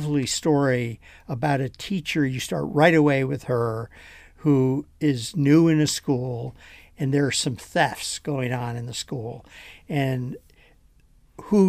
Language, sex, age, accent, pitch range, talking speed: English, male, 50-69, American, 130-160 Hz, 145 wpm